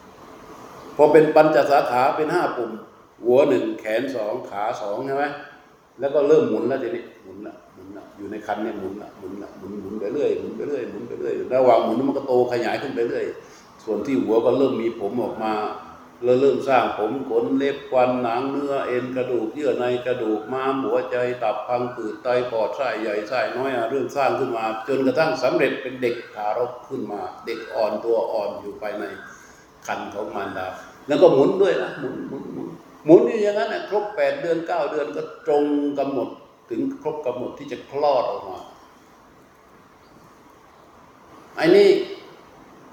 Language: Thai